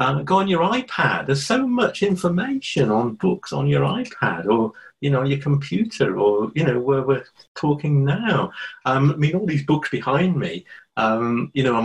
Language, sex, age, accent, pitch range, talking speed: English, male, 50-69, British, 125-200 Hz, 200 wpm